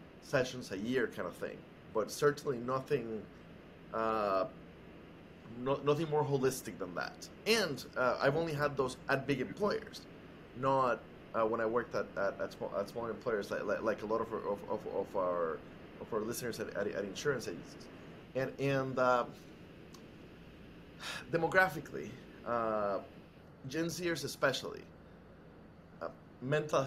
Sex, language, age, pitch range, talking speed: male, English, 30-49, 120-150 Hz, 145 wpm